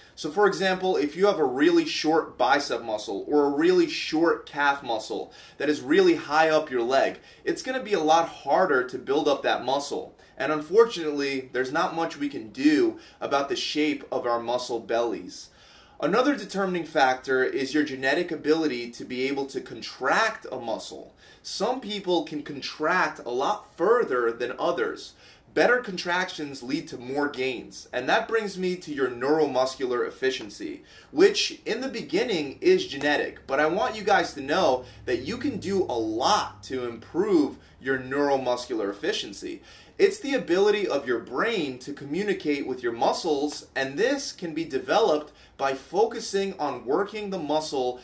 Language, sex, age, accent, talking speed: English, male, 30-49, American, 165 wpm